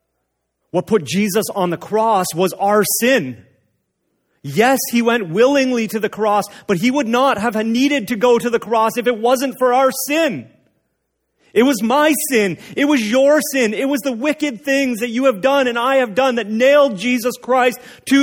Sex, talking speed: male, 195 wpm